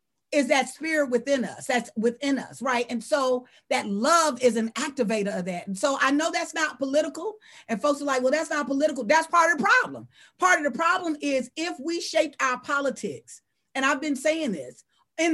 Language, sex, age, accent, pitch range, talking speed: English, female, 40-59, American, 240-325 Hz, 210 wpm